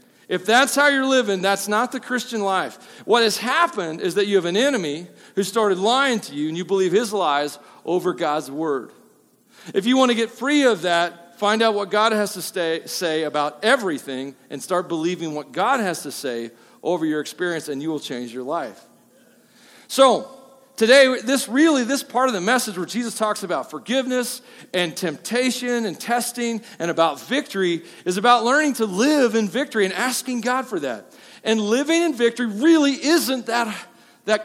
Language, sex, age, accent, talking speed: English, male, 40-59, American, 185 wpm